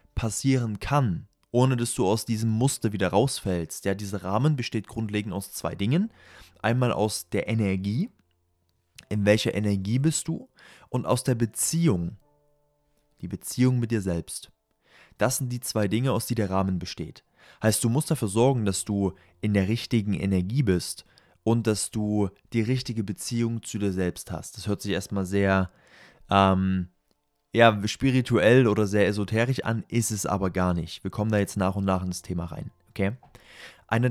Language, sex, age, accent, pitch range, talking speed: German, male, 20-39, German, 95-120 Hz, 170 wpm